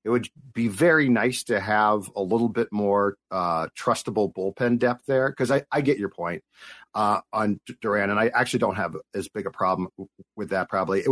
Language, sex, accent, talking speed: English, male, American, 205 wpm